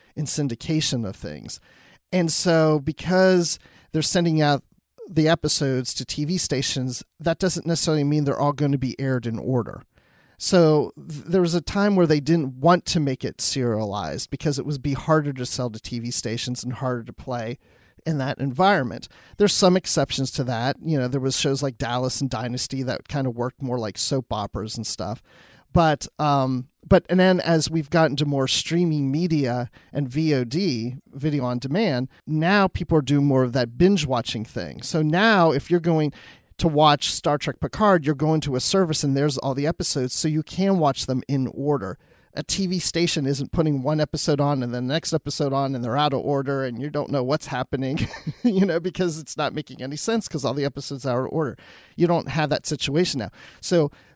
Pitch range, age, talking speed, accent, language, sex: 130-160 Hz, 40-59, 205 wpm, American, English, male